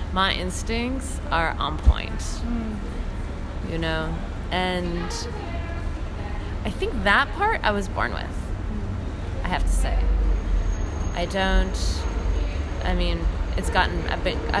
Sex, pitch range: female, 70-100 Hz